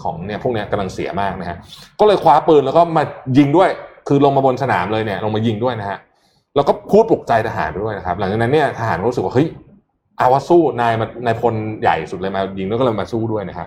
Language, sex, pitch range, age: Thai, male, 110-160 Hz, 20-39